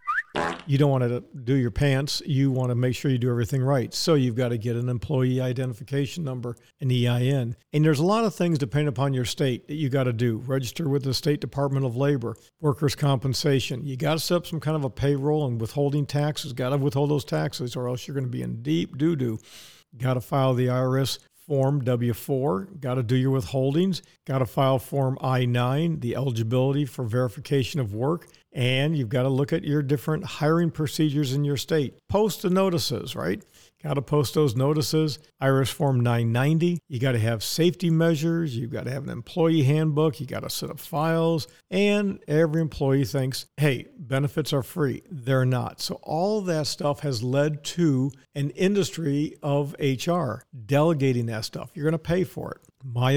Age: 50-69